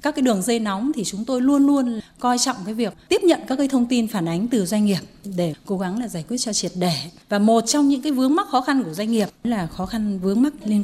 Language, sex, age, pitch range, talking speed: Vietnamese, female, 20-39, 185-255 Hz, 290 wpm